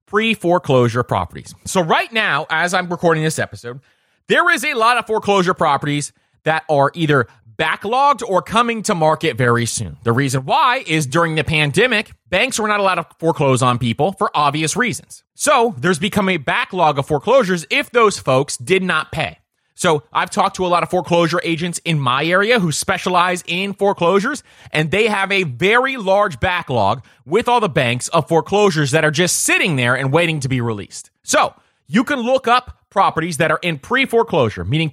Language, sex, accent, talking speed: English, male, American, 185 wpm